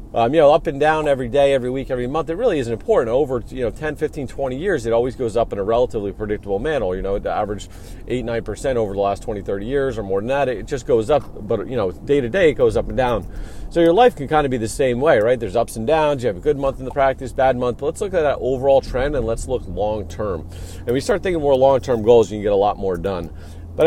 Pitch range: 105-150 Hz